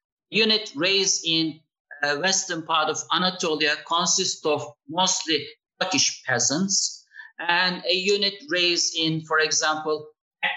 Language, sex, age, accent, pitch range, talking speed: English, male, 50-69, Turkish, 150-190 Hz, 120 wpm